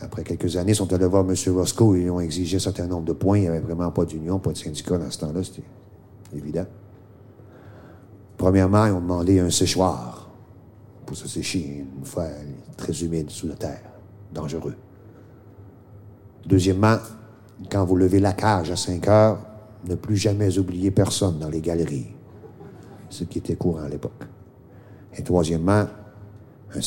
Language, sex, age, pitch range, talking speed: French, male, 50-69, 85-105 Hz, 165 wpm